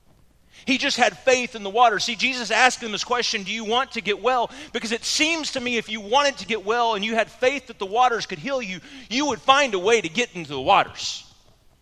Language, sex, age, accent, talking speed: English, male, 30-49, American, 255 wpm